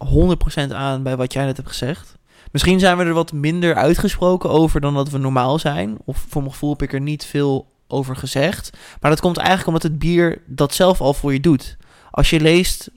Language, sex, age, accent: Dutch, male, 20-39, Dutch